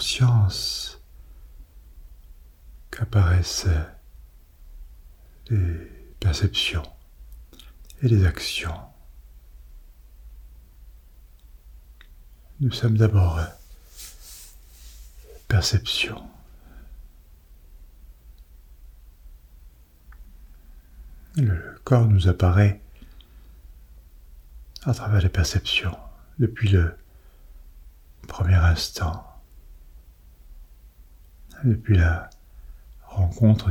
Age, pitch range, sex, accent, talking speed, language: 60-79, 65-90 Hz, male, French, 45 wpm, French